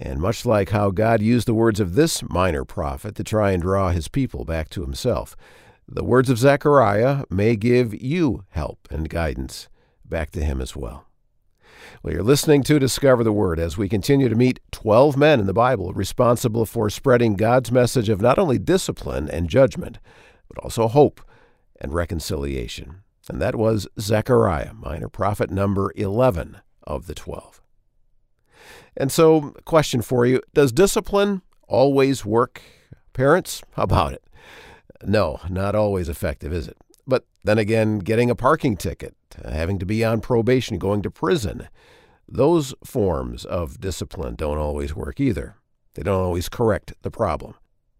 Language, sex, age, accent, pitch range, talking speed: English, male, 50-69, American, 90-125 Hz, 160 wpm